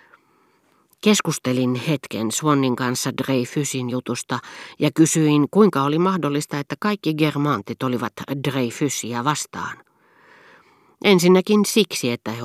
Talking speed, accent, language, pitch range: 100 wpm, native, Finnish, 120-155 Hz